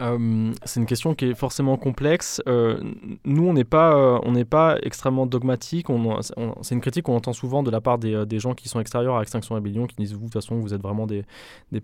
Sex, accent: male, French